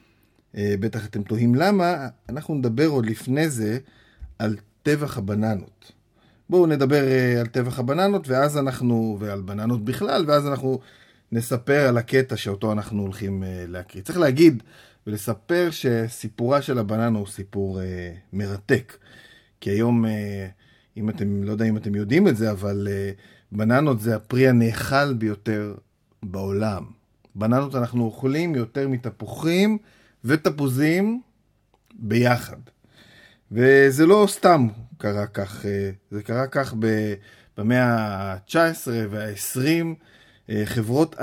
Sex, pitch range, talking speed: male, 105-140 Hz, 115 wpm